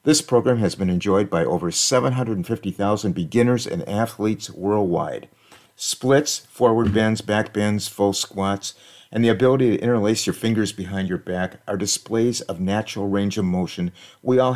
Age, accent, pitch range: 50-69, American, 95-120 Hz